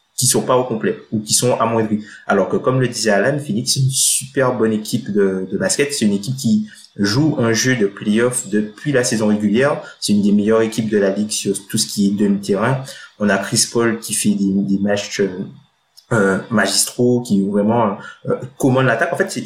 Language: French